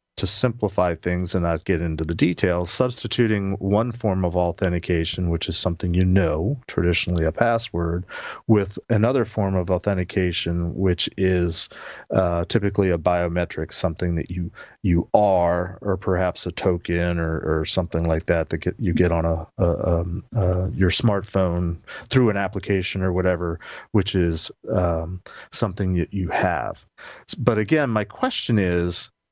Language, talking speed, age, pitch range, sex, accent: English, 155 wpm, 40-59, 85-110 Hz, male, American